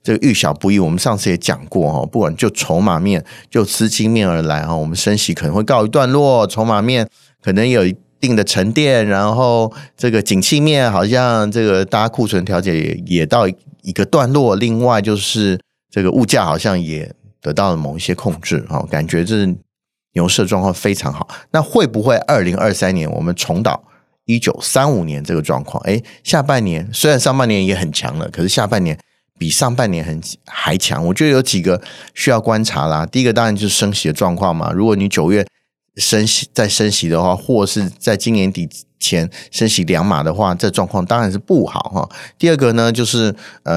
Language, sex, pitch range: Chinese, male, 95-115 Hz